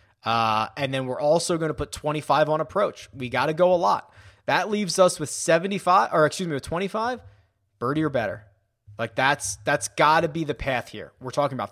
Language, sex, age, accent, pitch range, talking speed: English, male, 20-39, American, 125-185 Hz, 215 wpm